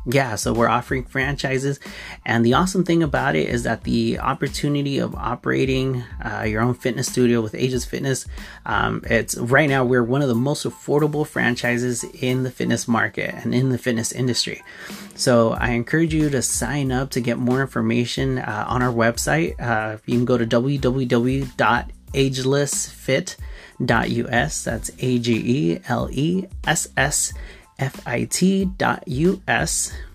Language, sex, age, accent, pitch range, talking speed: English, male, 30-49, American, 115-135 Hz, 135 wpm